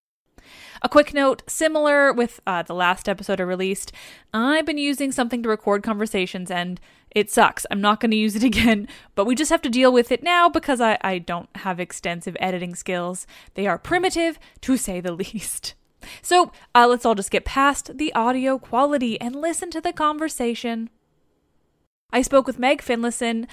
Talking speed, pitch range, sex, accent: 185 wpm, 195-270 Hz, female, American